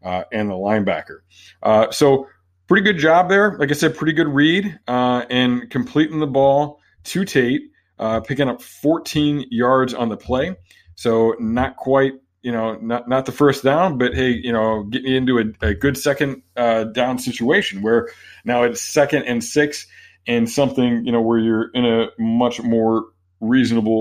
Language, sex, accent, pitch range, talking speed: English, male, American, 110-140 Hz, 180 wpm